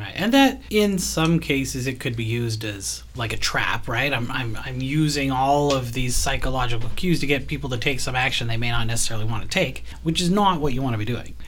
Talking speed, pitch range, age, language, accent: 235 wpm, 120-155 Hz, 30-49, English, American